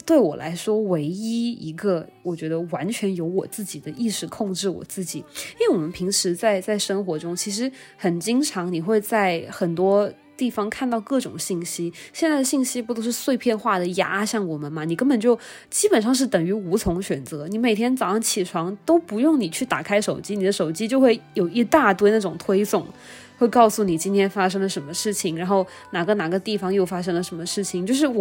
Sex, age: female, 20-39